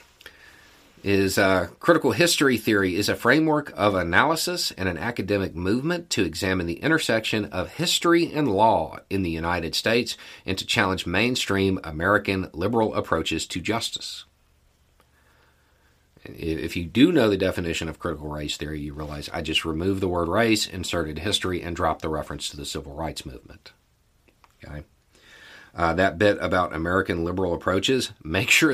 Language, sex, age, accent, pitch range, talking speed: English, male, 40-59, American, 80-105 Hz, 155 wpm